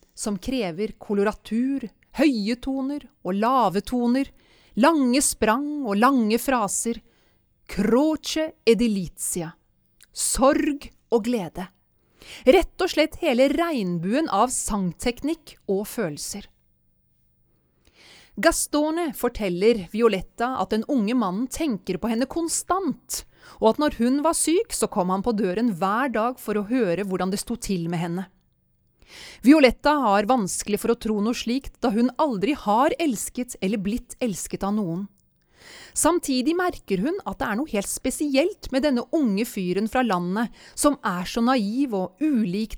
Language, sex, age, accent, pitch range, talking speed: English, female, 30-49, Swedish, 200-275 Hz, 140 wpm